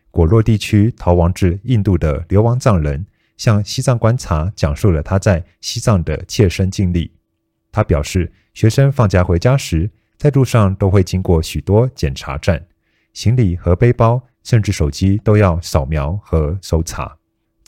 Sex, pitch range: male, 85-110 Hz